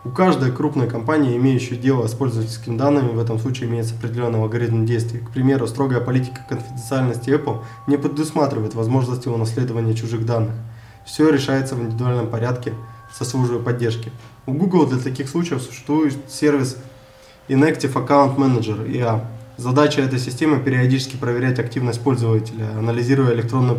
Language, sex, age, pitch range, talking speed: Russian, male, 20-39, 120-140 Hz, 140 wpm